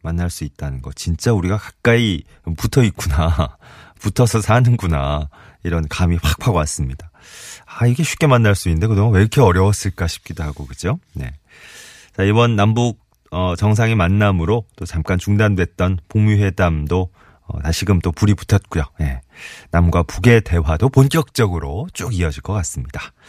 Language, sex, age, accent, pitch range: Korean, male, 30-49, native, 80-105 Hz